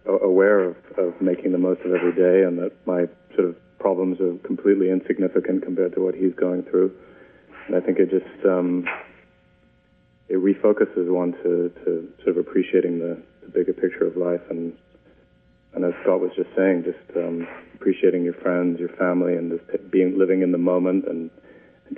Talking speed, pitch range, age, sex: 185 wpm, 85-95 Hz, 30-49, male